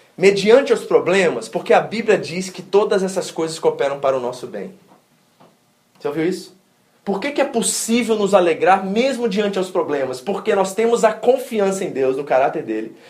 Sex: male